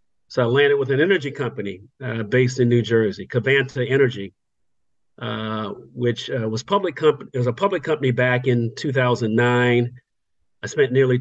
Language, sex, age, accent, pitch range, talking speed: English, male, 50-69, American, 115-140 Hz, 175 wpm